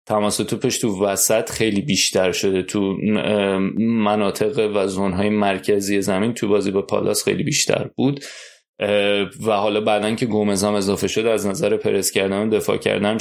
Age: 20-39